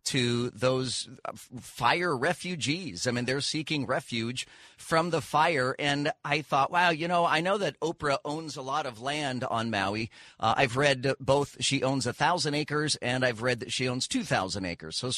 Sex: male